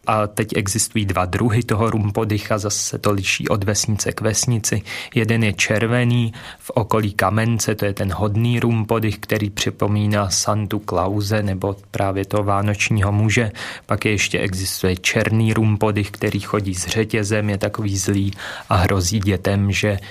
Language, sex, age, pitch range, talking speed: Czech, male, 30-49, 100-110 Hz, 150 wpm